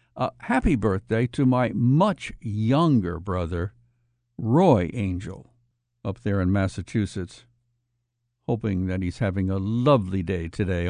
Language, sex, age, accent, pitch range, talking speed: English, male, 60-79, American, 105-130 Hz, 120 wpm